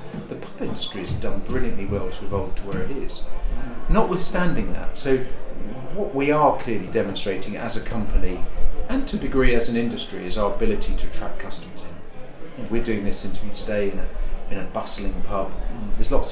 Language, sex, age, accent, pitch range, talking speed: English, male, 40-59, British, 90-110 Hz, 185 wpm